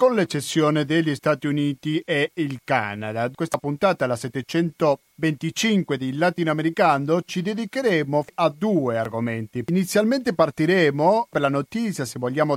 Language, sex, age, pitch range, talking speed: Italian, male, 40-59, 135-180 Hz, 125 wpm